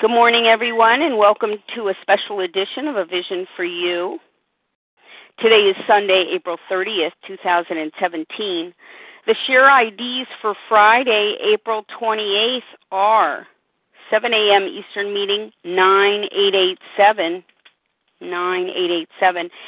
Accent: American